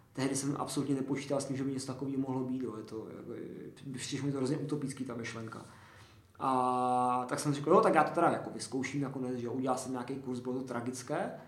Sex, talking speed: male, 210 wpm